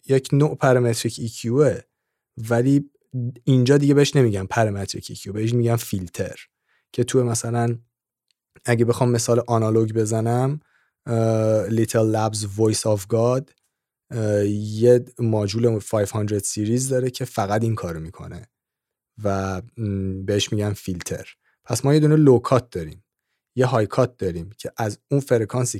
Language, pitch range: Persian, 105-130 Hz